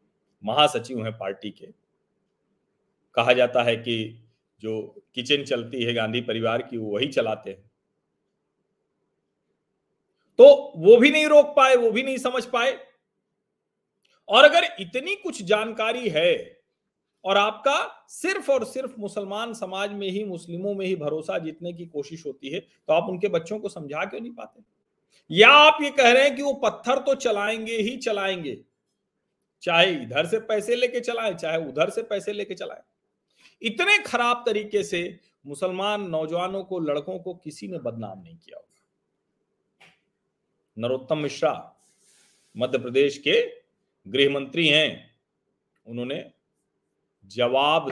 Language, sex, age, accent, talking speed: Hindi, male, 40-59, native, 140 wpm